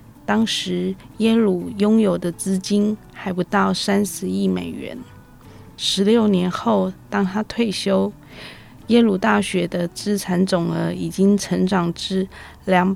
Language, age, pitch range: Chinese, 20-39, 170-205 Hz